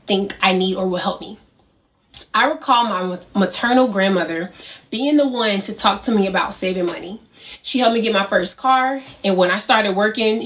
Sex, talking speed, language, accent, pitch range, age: female, 195 wpm, English, American, 195-240 Hz, 20-39